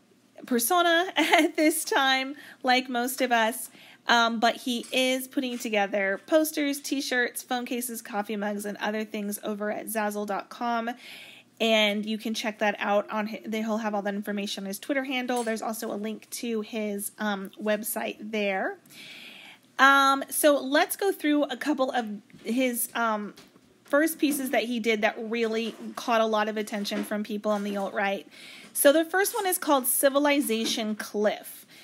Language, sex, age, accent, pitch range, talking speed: English, female, 30-49, American, 210-265 Hz, 165 wpm